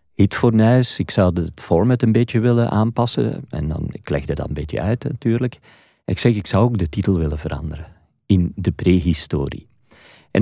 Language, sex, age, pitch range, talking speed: Dutch, male, 50-69, 90-115 Hz, 190 wpm